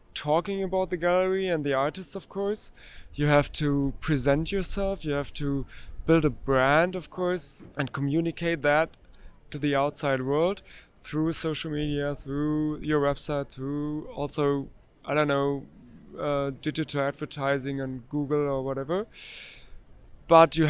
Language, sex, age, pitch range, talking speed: English, male, 20-39, 135-155 Hz, 140 wpm